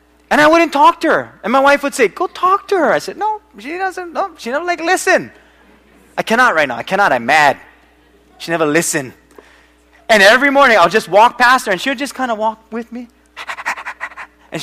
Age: 20-39